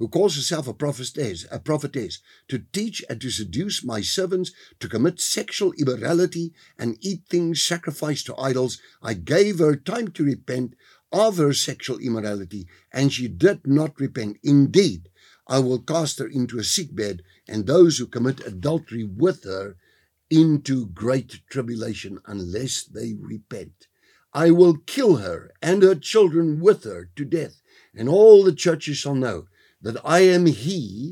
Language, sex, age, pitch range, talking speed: English, male, 60-79, 115-165 Hz, 155 wpm